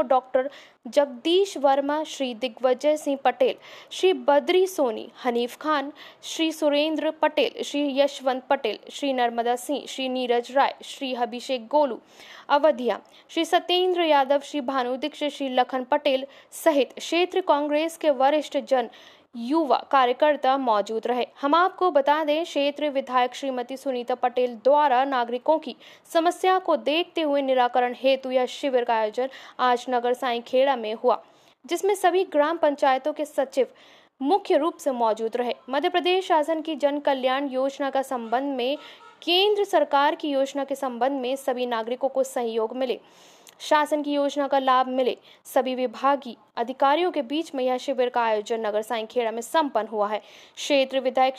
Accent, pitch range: native, 250-300 Hz